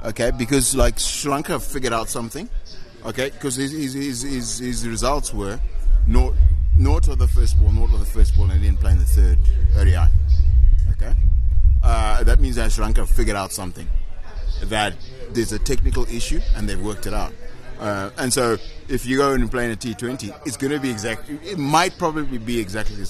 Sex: male